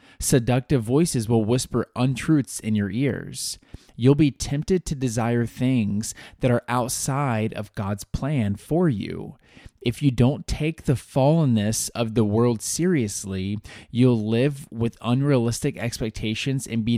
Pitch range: 110-135 Hz